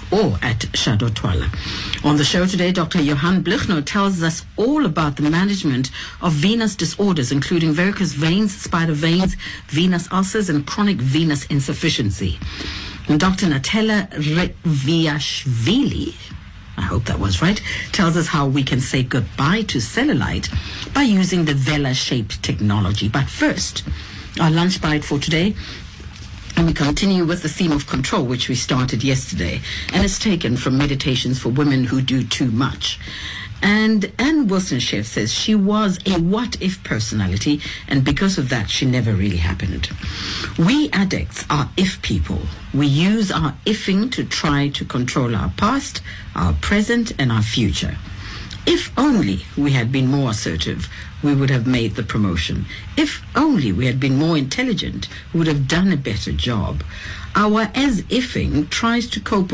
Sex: female